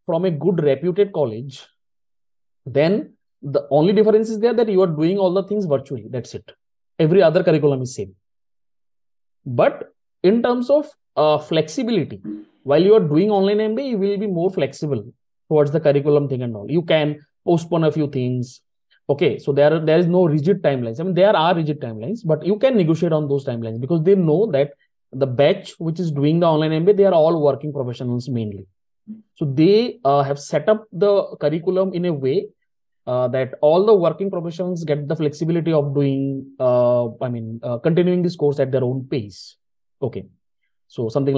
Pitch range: 130-185 Hz